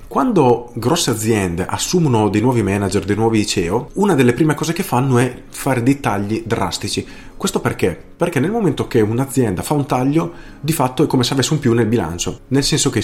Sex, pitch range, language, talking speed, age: male, 105-130 Hz, Italian, 205 wpm, 30-49